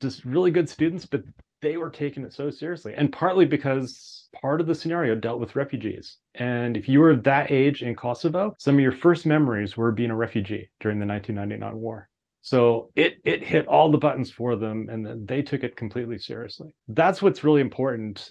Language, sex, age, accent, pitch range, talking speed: English, male, 30-49, American, 115-150 Hz, 205 wpm